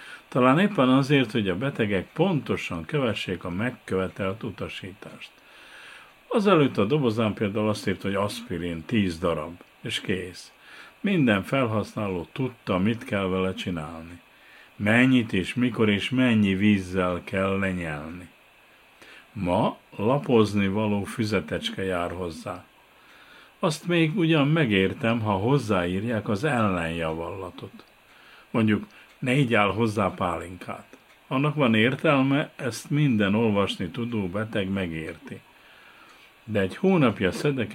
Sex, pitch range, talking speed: male, 95-125 Hz, 115 wpm